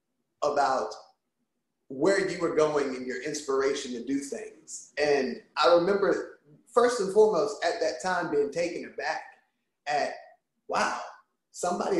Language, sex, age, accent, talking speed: English, male, 30-49, American, 130 wpm